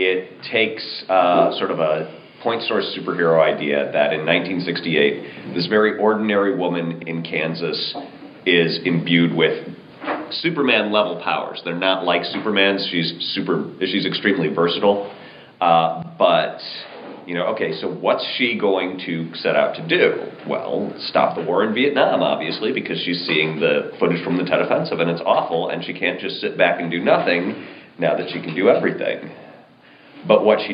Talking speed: 165 wpm